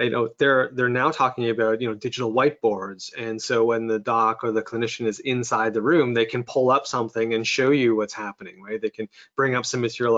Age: 20-39